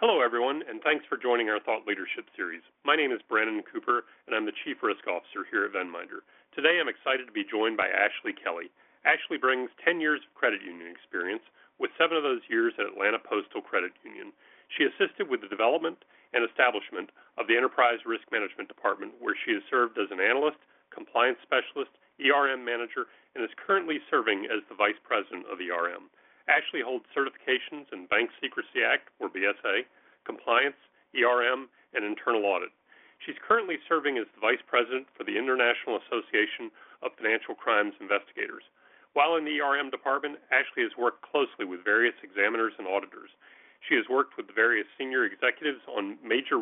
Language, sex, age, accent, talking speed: English, male, 40-59, American, 175 wpm